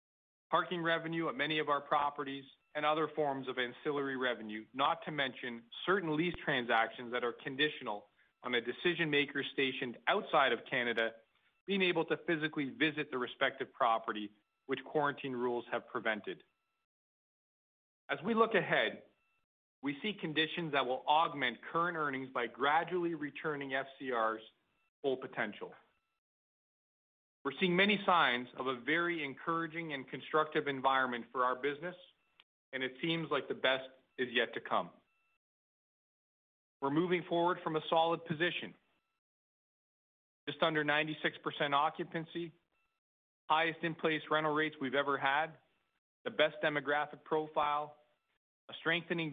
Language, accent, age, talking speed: English, American, 40-59, 130 wpm